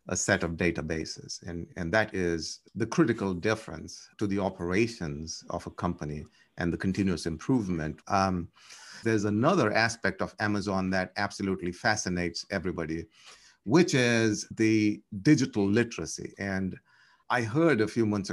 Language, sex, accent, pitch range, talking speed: English, male, Indian, 95-115 Hz, 140 wpm